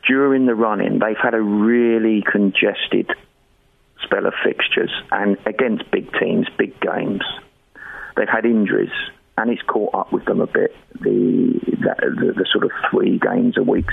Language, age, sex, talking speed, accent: English, 40-59, male, 165 wpm, British